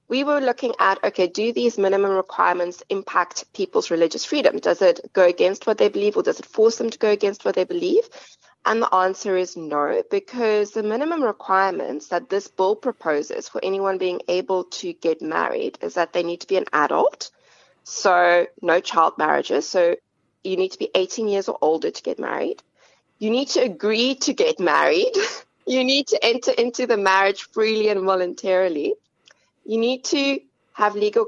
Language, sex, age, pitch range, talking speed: English, female, 20-39, 185-255 Hz, 185 wpm